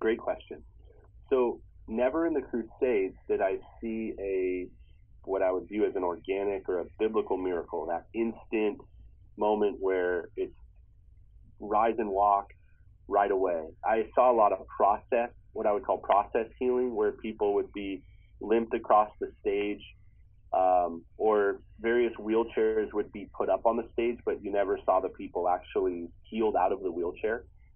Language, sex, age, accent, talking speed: English, male, 30-49, American, 160 wpm